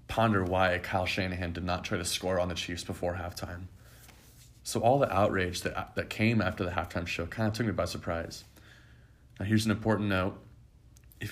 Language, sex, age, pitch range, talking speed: English, male, 20-39, 90-110 Hz, 195 wpm